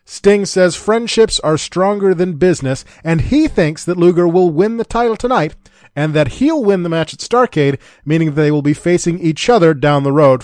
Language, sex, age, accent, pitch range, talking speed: English, male, 30-49, American, 140-185 Hz, 200 wpm